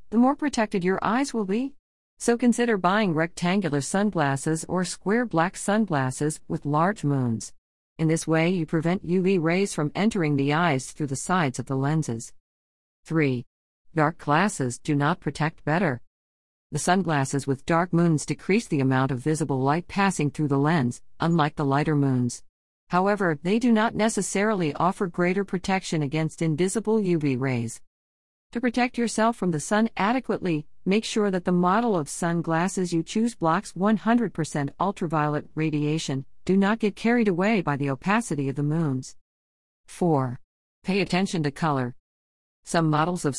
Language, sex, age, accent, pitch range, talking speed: English, female, 50-69, American, 145-195 Hz, 155 wpm